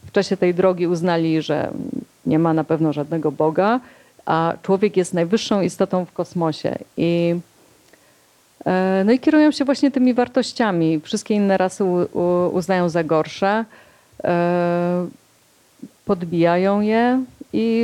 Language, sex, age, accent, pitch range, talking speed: Polish, female, 30-49, native, 170-210 Hz, 120 wpm